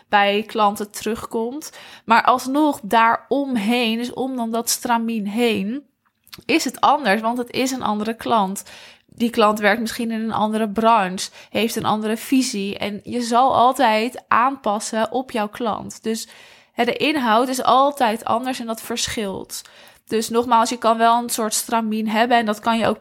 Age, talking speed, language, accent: 20-39, 165 wpm, Dutch, Dutch